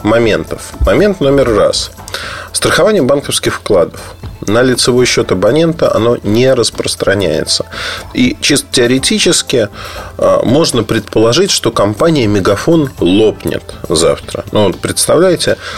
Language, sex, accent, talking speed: Russian, male, native, 105 wpm